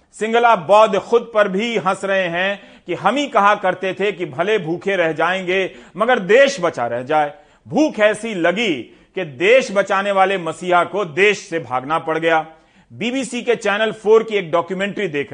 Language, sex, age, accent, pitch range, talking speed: Hindi, male, 40-59, native, 170-210 Hz, 180 wpm